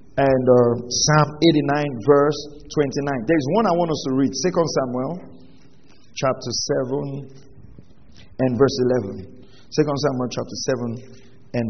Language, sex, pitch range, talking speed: English, male, 120-155 Hz, 130 wpm